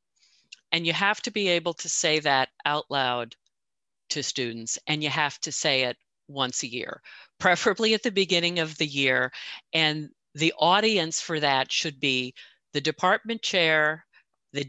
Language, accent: English, American